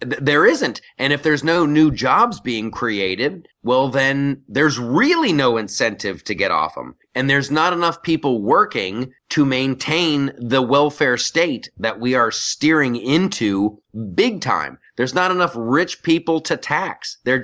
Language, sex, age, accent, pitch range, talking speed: English, male, 30-49, American, 130-170 Hz, 160 wpm